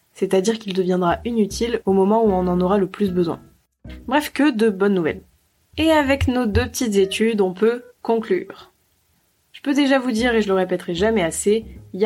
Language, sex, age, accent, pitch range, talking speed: French, female, 20-39, French, 185-225 Hz, 200 wpm